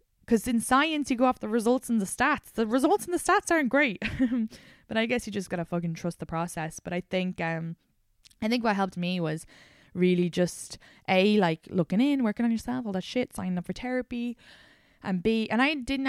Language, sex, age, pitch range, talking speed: English, female, 20-39, 160-200 Hz, 225 wpm